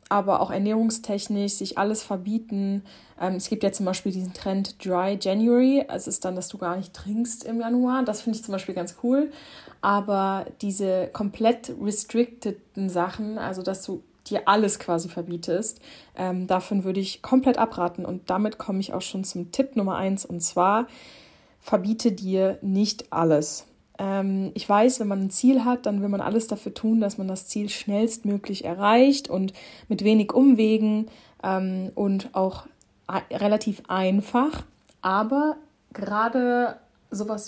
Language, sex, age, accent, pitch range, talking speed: German, female, 20-39, German, 185-220 Hz, 155 wpm